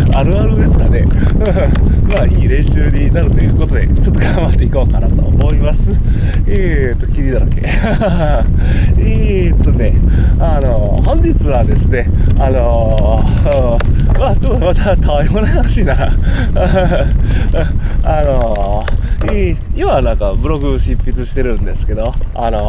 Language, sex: Japanese, male